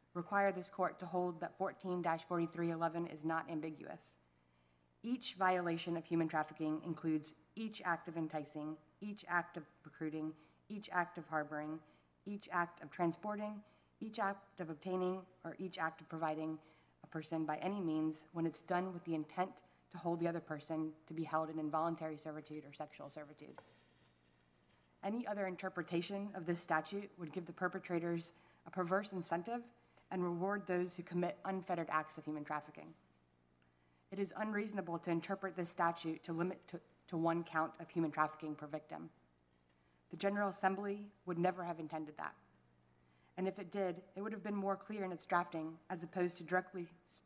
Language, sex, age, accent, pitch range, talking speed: English, female, 30-49, American, 155-185 Hz, 170 wpm